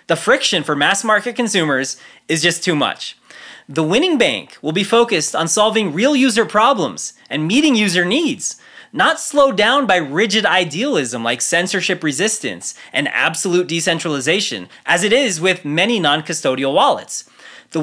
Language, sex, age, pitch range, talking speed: English, male, 20-39, 155-225 Hz, 150 wpm